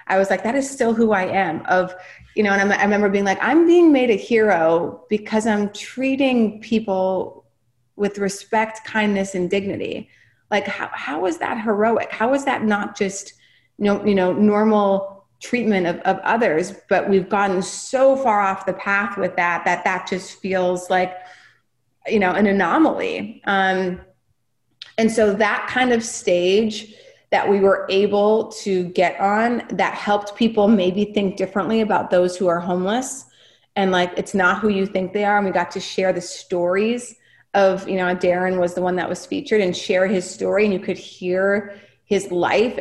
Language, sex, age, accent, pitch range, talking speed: English, female, 30-49, American, 185-210 Hz, 185 wpm